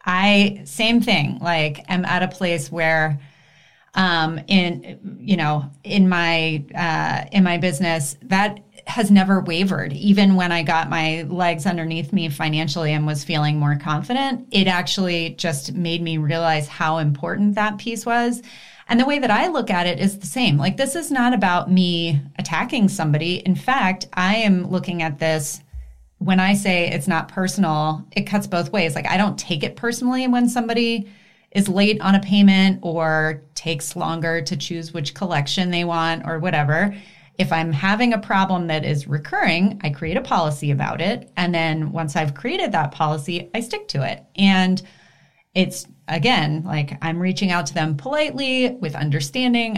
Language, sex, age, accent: English, female, 30-49, American